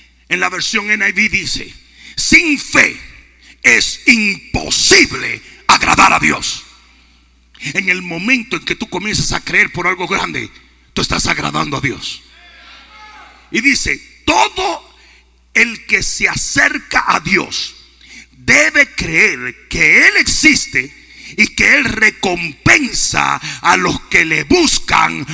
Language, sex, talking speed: Spanish, male, 125 wpm